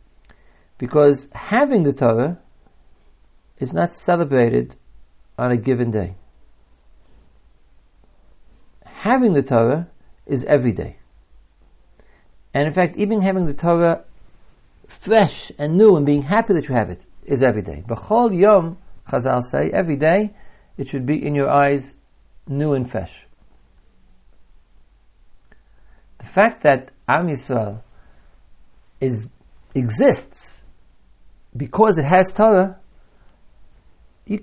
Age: 60-79